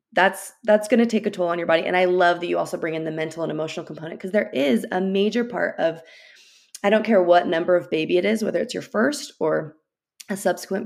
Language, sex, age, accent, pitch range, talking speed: English, female, 20-39, American, 170-220 Hz, 255 wpm